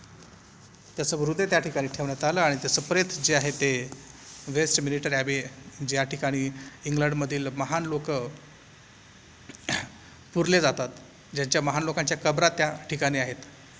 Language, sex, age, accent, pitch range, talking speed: Hindi, male, 30-49, native, 140-160 Hz, 85 wpm